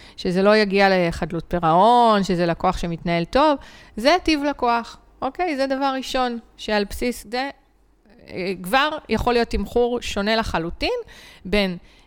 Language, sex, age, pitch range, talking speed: Hebrew, female, 30-49, 195-255 Hz, 130 wpm